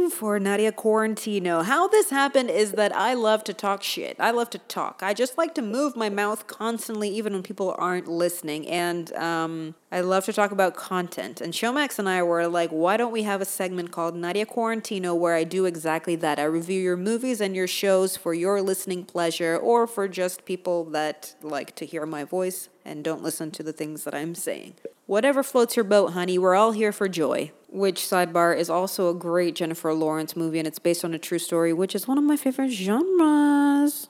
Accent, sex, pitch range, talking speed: American, female, 175-230 Hz, 215 wpm